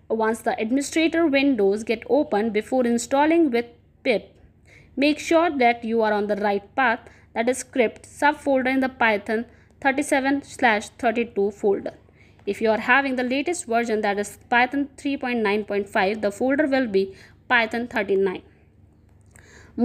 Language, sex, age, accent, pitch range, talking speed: English, female, 20-39, Indian, 205-260 Hz, 140 wpm